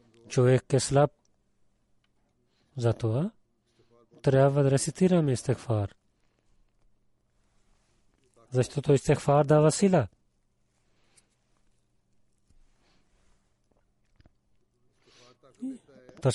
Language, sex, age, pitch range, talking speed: Bulgarian, male, 40-59, 125-150 Hz, 60 wpm